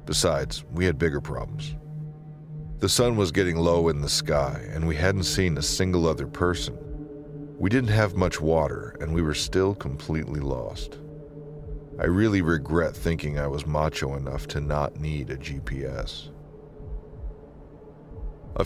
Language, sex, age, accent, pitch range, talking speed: English, male, 40-59, American, 75-115 Hz, 150 wpm